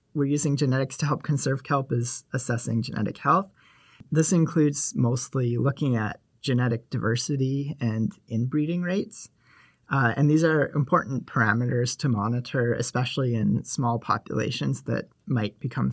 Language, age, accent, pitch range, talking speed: English, 30-49, American, 120-150 Hz, 135 wpm